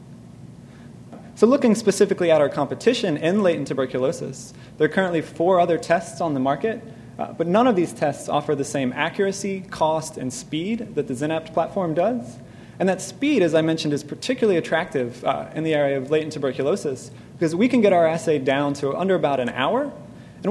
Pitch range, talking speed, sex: 140-195 Hz, 190 wpm, male